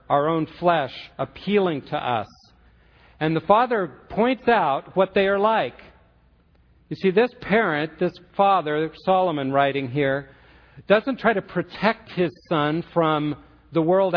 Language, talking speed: English, 140 wpm